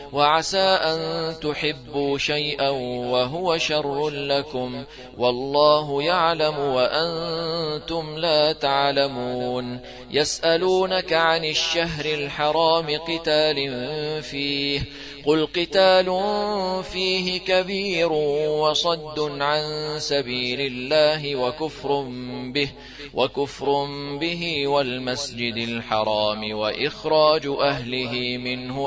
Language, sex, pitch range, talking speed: Arabic, male, 140-165 Hz, 75 wpm